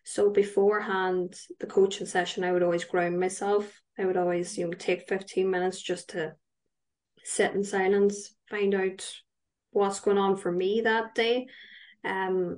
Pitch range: 185-205 Hz